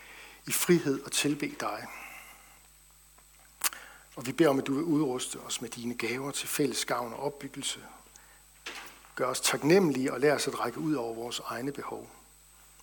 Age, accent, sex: 60-79, native, male